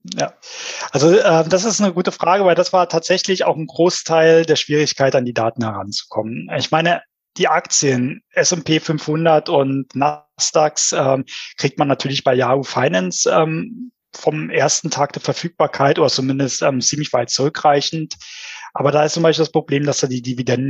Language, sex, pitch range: German, male, 135-170 Hz